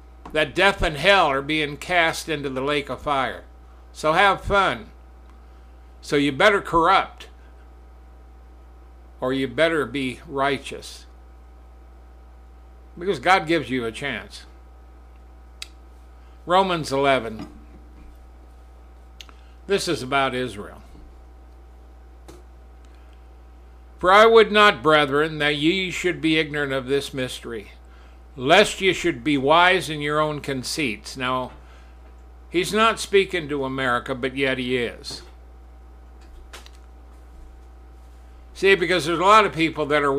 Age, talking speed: 60-79, 115 wpm